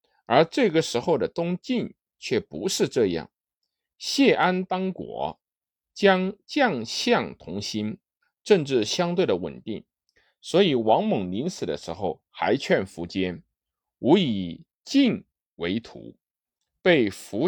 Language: Chinese